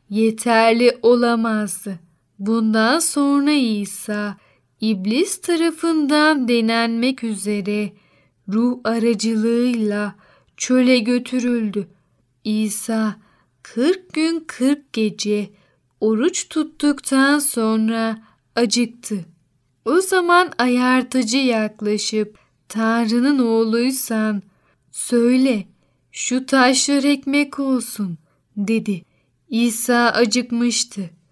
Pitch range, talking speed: 215-260 Hz, 70 wpm